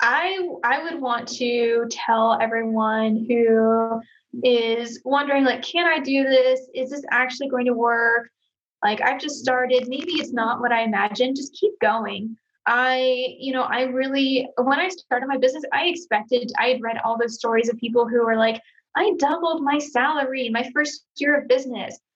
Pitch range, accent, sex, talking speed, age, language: 230-275 Hz, American, female, 180 wpm, 10-29, English